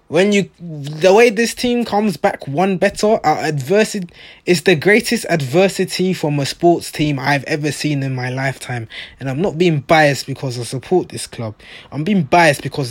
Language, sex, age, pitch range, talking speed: English, male, 20-39, 135-185 Hz, 185 wpm